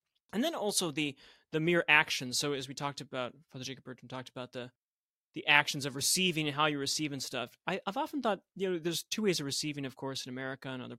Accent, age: American, 30-49